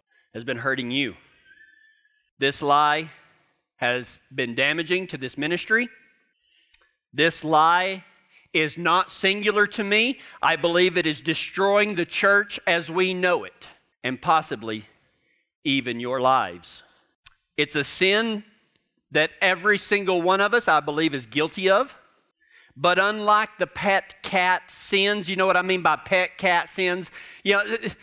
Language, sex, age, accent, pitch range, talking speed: English, male, 40-59, American, 160-200 Hz, 140 wpm